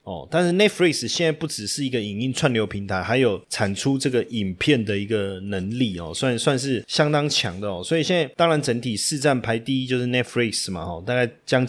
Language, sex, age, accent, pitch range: Chinese, male, 30-49, native, 110-140 Hz